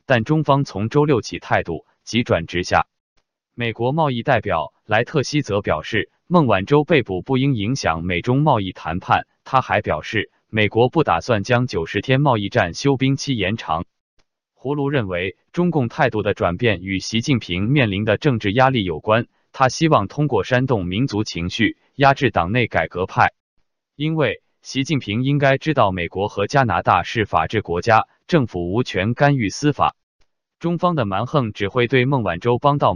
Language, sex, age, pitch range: Chinese, male, 20-39, 105-145 Hz